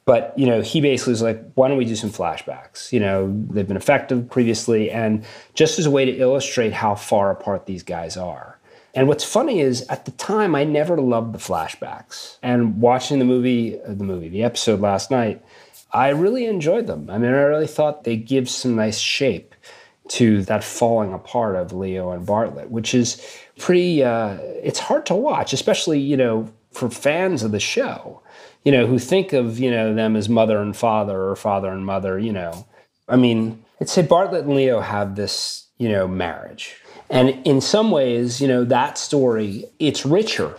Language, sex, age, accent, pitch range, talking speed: English, male, 30-49, American, 105-140 Hz, 195 wpm